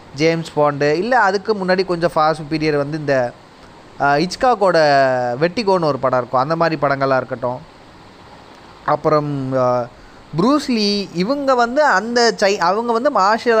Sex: male